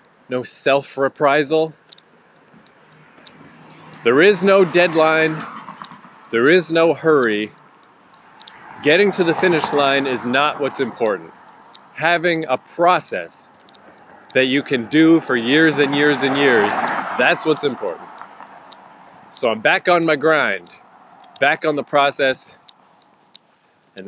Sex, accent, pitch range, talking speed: male, American, 120-155 Hz, 115 wpm